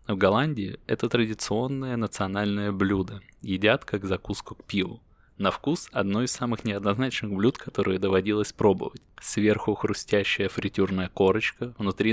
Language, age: Russian, 20-39